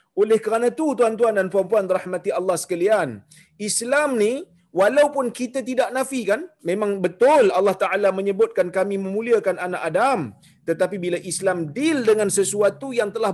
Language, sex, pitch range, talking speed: Malayalam, male, 180-250 Hz, 150 wpm